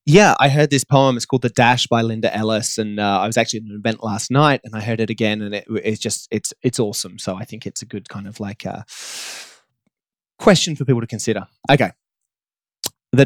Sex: male